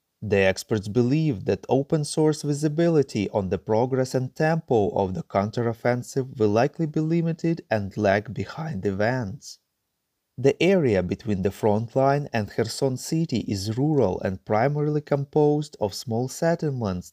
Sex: male